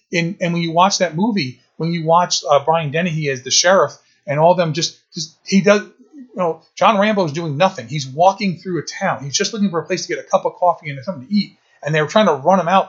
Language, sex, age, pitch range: English, male, 30-49, 150-190 Hz